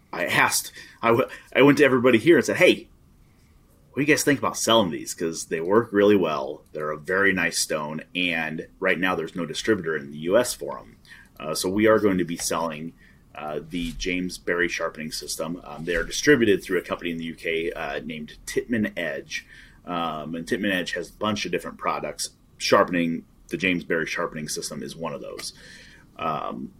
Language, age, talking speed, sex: English, 30-49, 195 wpm, male